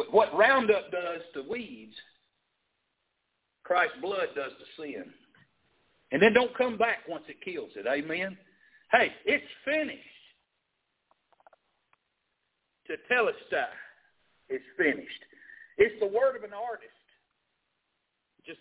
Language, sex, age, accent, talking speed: English, male, 60-79, American, 110 wpm